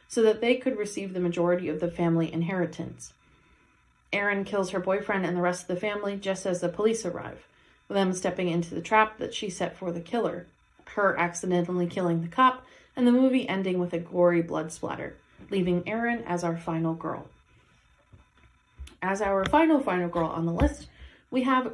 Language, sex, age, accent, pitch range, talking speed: English, female, 30-49, American, 175-230 Hz, 190 wpm